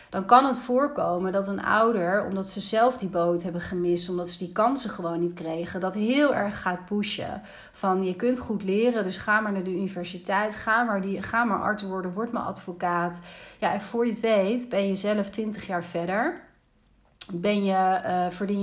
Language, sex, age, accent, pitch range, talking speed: Dutch, female, 30-49, Dutch, 180-215 Hz, 205 wpm